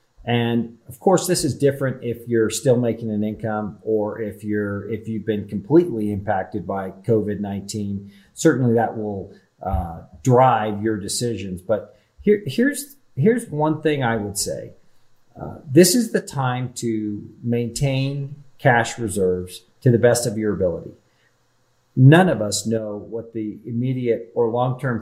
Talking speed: 150 wpm